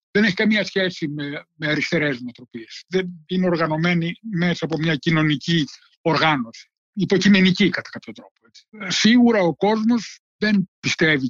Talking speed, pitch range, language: 140 wpm, 145-195 Hz, Greek